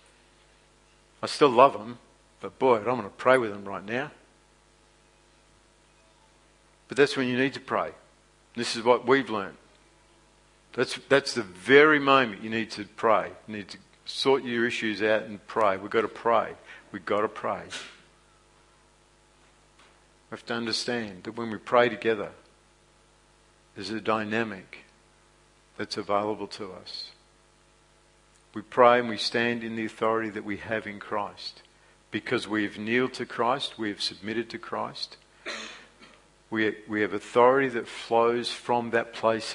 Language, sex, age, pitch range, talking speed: English, male, 60-79, 105-120 Hz, 155 wpm